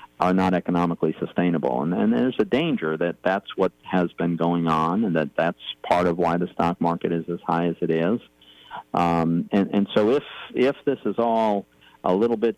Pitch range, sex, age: 80-95 Hz, male, 50-69